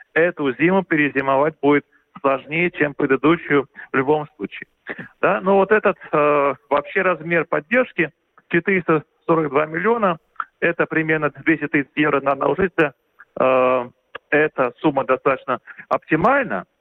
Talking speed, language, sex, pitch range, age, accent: 115 wpm, Russian, male, 140-170 Hz, 40-59, native